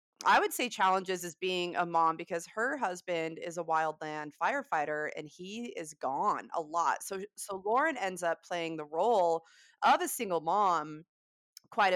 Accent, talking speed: American, 170 wpm